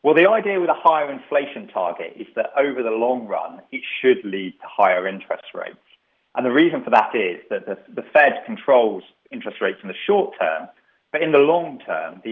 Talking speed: 215 wpm